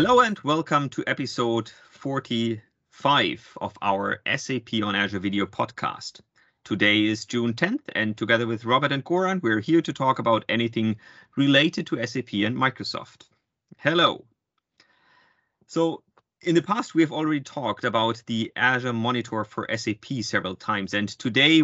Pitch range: 110-145 Hz